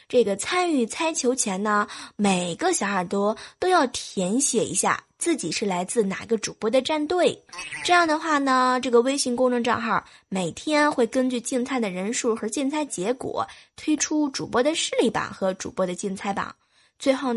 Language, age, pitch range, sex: Japanese, 20-39, 200-270 Hz, female